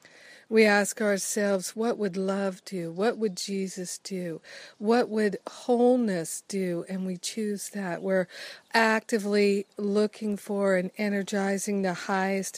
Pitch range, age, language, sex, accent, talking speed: 190-215 Hz, 50-69, English, female, American, 130 wpm